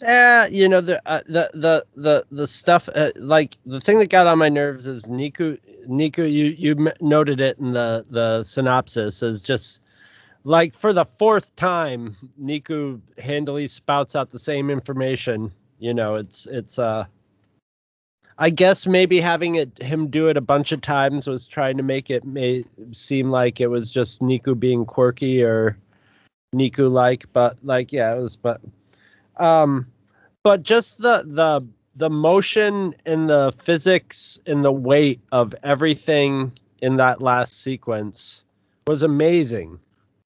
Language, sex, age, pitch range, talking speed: English, male, 30-49, 125-155 Hz, 155 wpm